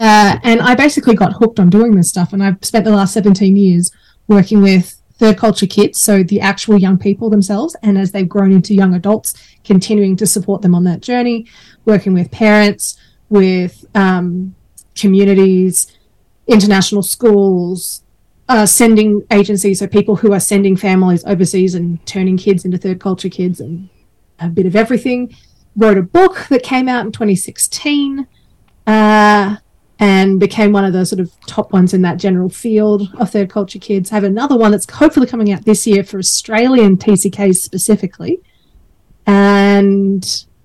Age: 30-49